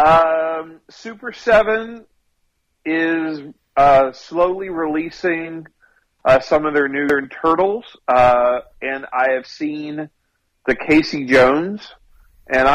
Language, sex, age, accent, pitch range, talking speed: English, male, 40-59, American, 125-160 Hz, 105 wpm